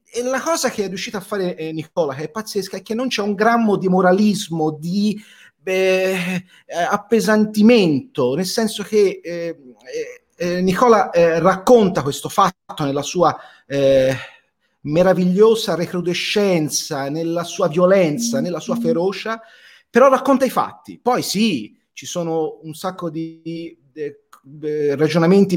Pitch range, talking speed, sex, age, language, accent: 165-215 Hz, 135 wpm, male, 30-49, Italian, native